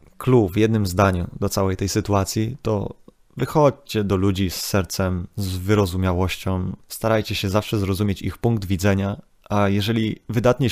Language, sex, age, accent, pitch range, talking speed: Polish, male, 20-39, native, 95-120 Hz, 145 wpm